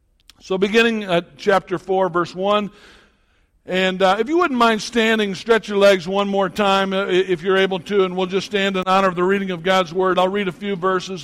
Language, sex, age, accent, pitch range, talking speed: English, male, 60-79, American, 190-230 Hz, 225 wpm